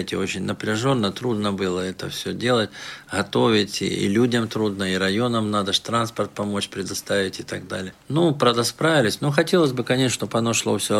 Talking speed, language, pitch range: 175 wpm, Russian, 100-125 Hz